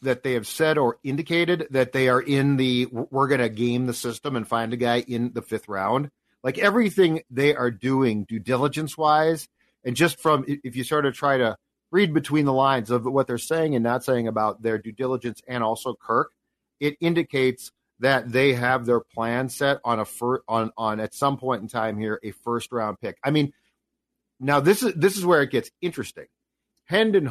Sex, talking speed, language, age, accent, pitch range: male, 205 wpm, English, 40-59, American, 120-155 Hz